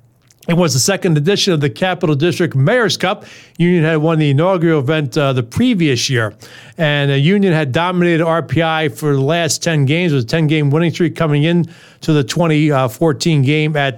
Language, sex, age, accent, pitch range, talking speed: English, male, 40-59, American, 145-175 Hz, 190 wpm